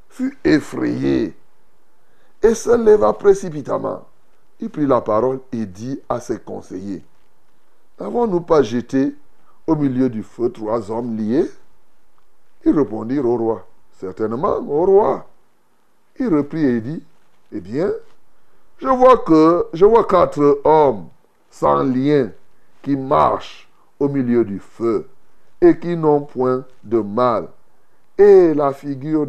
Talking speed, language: 125 wpm, French